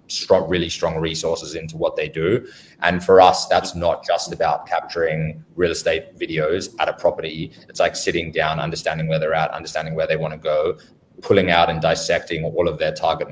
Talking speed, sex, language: 195 wpm, male, English